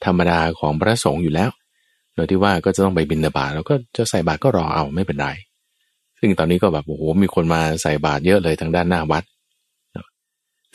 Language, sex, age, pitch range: Thai, male, 20-39, 85-120 Hz